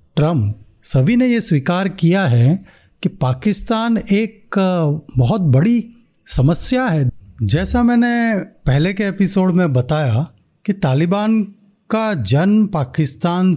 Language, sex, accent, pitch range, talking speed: Hindi, male, native, 145-200 Hz, 115 wpm